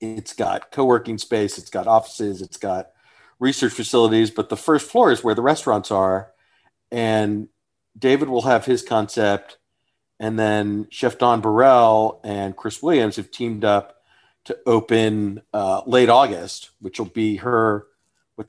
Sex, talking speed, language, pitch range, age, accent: male, 155 wpm, English, 100-115 Hz, 40-59, American